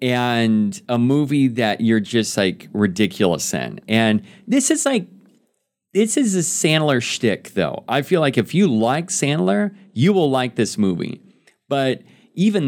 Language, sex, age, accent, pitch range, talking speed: English, male, 40-59, American, 115-185 Hz, 155 wpm